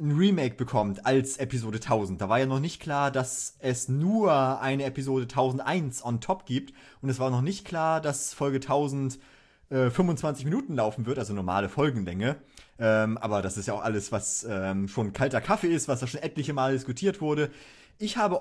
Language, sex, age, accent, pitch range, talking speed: German, male, 30-49, German, 115-150 Hz, 195 wpm